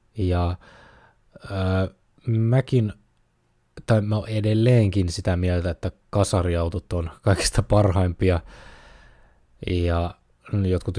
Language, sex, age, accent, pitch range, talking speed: Finnish, male, 20-39, native, 85-105 Hz, 85 wpm